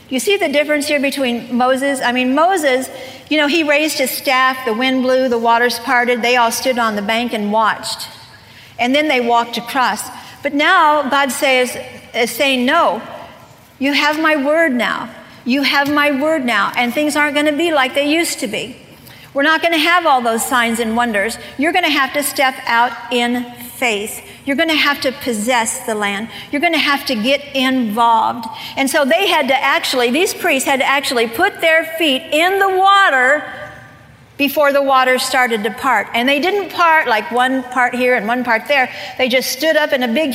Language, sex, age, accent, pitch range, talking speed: English, female, 50-69, American, 245-300 Hz, 210 wpm